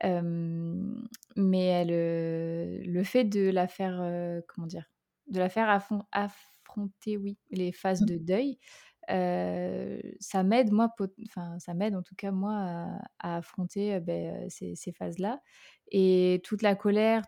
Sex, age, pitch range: female, 20-39, 180-215 Hz